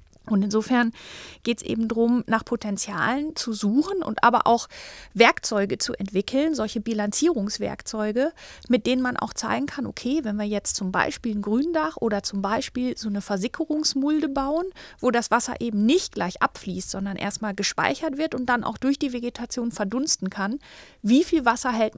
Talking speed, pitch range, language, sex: 170 wpm, 210-260 Hz, English, female